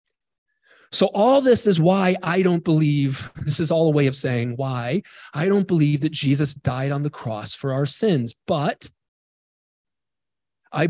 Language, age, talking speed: English, 40-59, 165 wpm